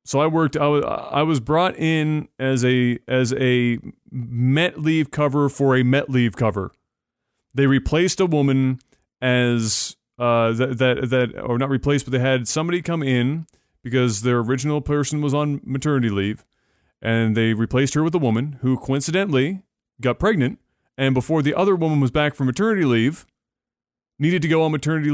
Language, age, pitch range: English, 30-49, 125-155 Hz